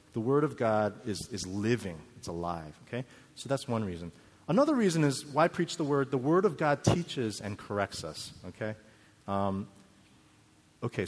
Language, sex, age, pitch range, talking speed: English, male, 30-49, 100-145 Hz, 175 wpm